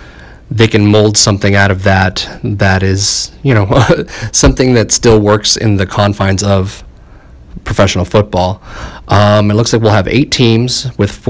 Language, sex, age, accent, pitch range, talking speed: English, male, 30-49, American, 95-110 Hz, 160 wpm